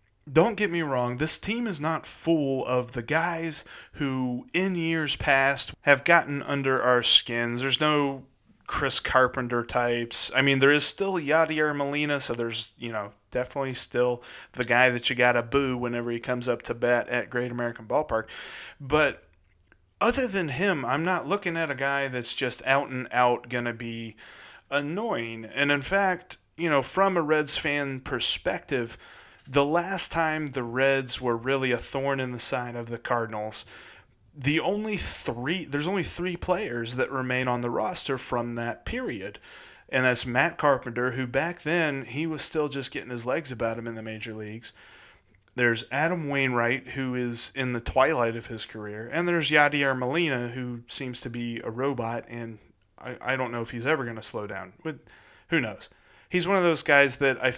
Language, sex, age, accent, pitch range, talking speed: English, male, 30-49, American, 120-150 Hz, 185 wpm